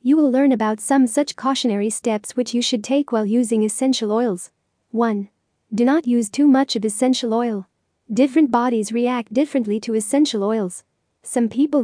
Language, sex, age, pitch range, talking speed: English, female, 40-59, 225-265 Hz, 170 wpm